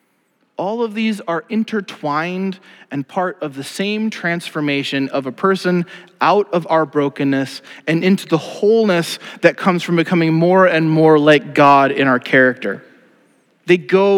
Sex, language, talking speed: male, English, 150 wpm